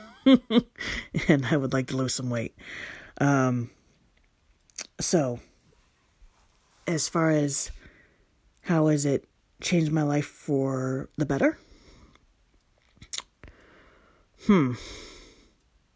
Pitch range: 120-145 Hz